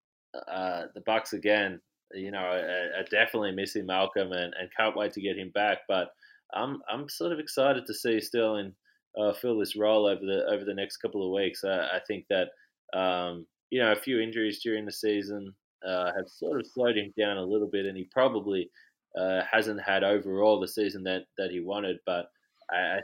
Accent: Australian